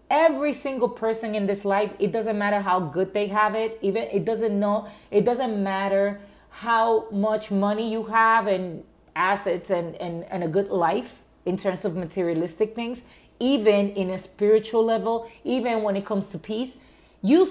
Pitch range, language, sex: 190-240 Hz, English, female